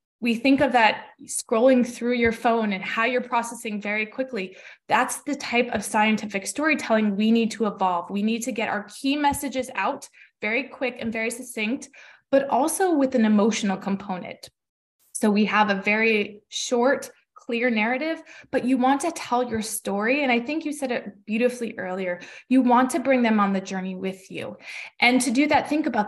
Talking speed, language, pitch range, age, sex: 190 wpm, English, 215-255 Hz, 20-39, female